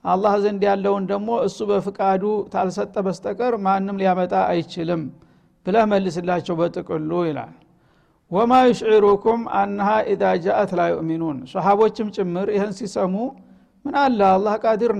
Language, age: Amharic, 60-79